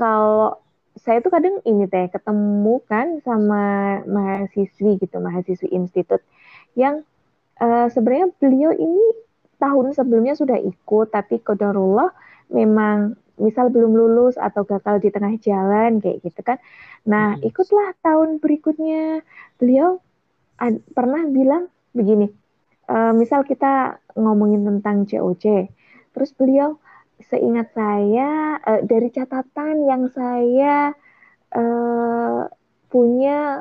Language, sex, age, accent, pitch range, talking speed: Indonesian, female, 20-39, native, 210-285 Hz, 110 wpm